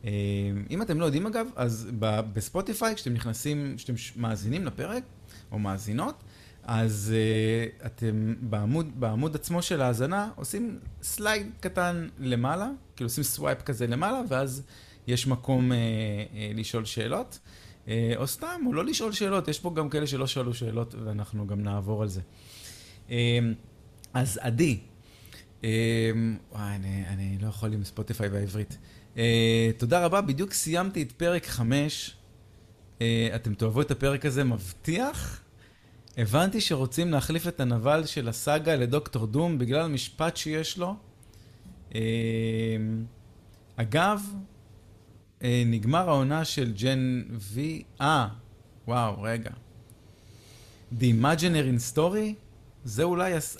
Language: Hebrew